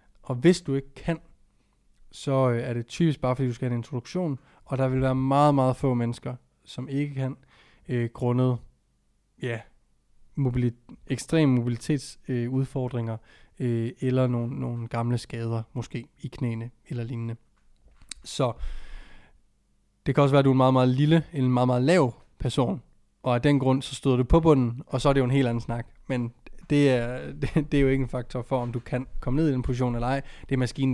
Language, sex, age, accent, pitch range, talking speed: Danish, male, 20-39, native, 125-145 Hz, 205 wpm